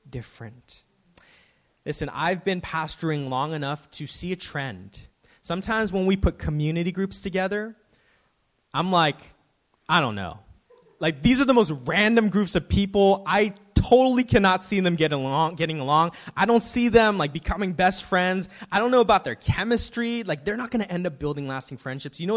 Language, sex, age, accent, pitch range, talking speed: English, male, 20-39, American, 170-235 Hz, 175 wpm